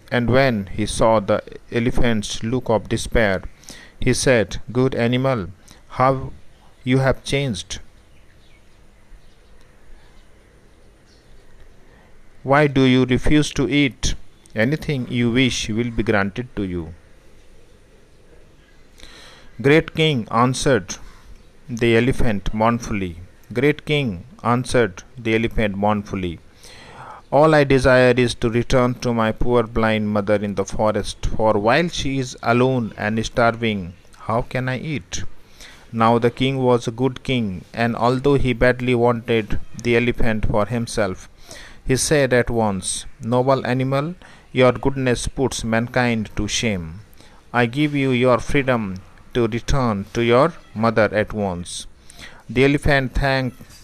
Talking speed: 125 wpm